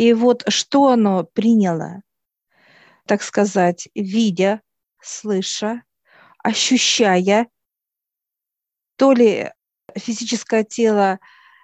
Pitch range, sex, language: 195-230 Hz, female, Russian